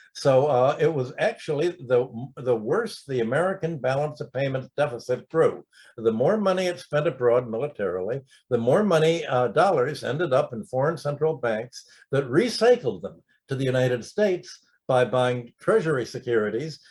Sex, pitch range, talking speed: male, 125-170 Hz, 155 wpm